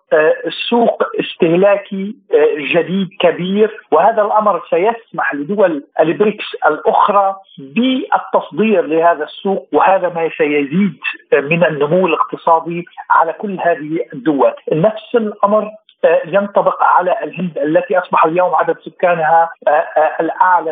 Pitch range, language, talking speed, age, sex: 160-205 Hz, Arabic, 100 wpm, 50-69, male